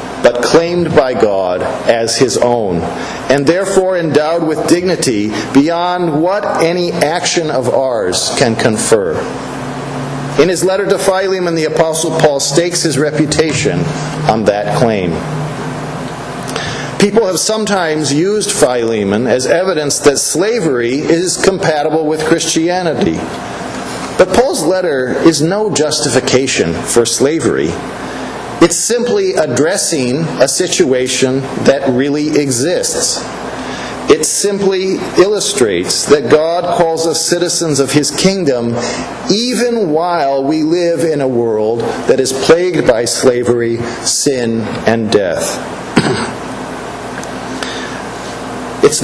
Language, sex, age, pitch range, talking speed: English, male, 50-69, 135-180 Hz, 110 wpm